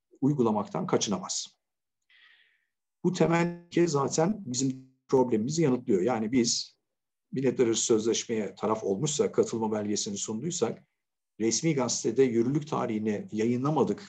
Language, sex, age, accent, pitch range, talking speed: Turkish, male, 50-69, native, 115-170 Hz, 95 wpm